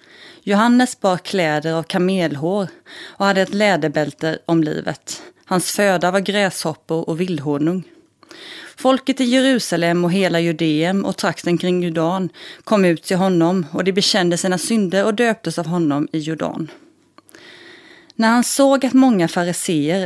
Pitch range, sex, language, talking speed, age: 170-225 Hz, female, Swedish, 145 wpm, 30-49